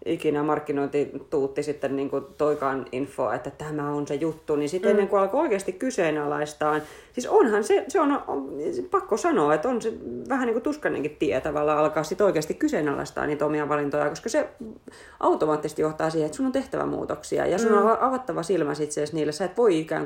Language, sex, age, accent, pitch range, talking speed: Finnish, female, 30-49, native, 150-205 Hz, 180 wpm